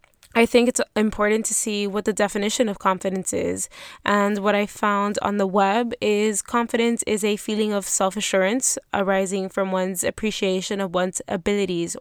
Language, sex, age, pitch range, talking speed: English, female, 10-29, 195-220 Hz, 165 wpm